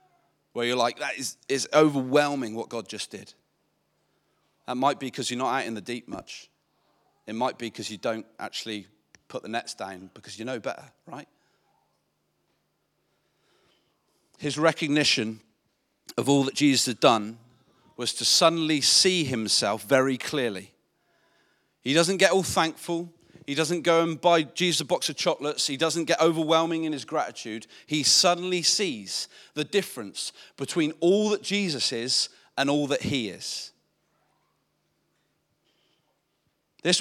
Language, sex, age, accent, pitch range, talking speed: English, male, 40-59, British, 145-210 Hz, 150 wpm